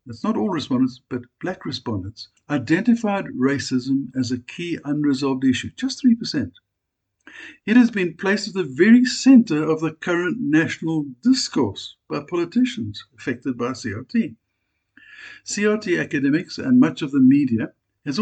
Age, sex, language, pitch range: 60-79, male, English, 120-190 Hz